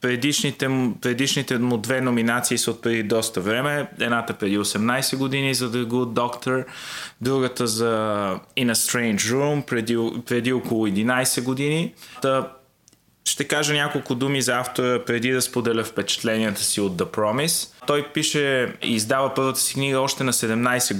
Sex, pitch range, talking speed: male, 115-135 Hz, 155 wpm